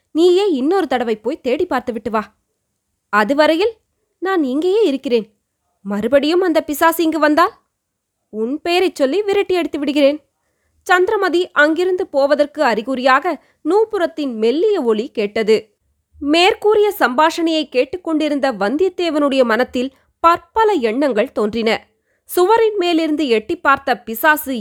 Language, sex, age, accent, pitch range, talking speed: Tamil, female, 20-39, native, 245-340 Hz, 100 wpm